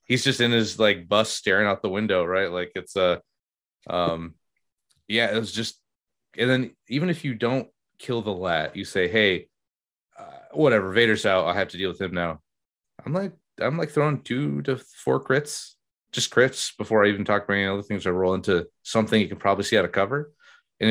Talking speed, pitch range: 210 wpm, 95-135 Hz